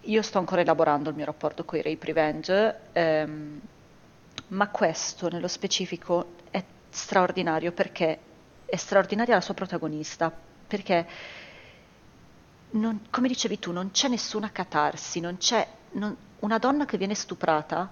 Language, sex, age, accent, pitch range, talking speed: Italian, female, 30-49, native, 165-220 Hz, 135 wpm